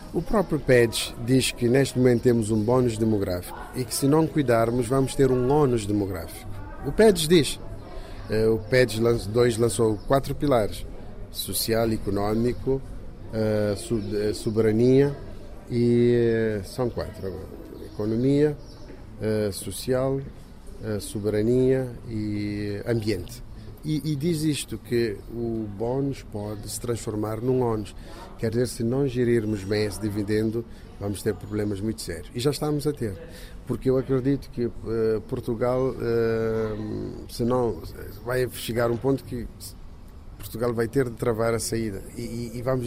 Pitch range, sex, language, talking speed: 105-125 Hz, male, Portuguese, 135 wpm